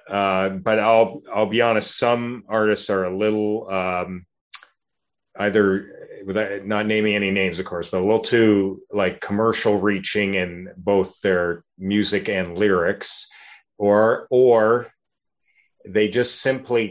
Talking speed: 135 wpm